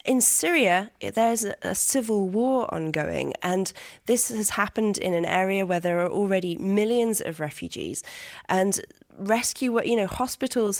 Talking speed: 145 wpm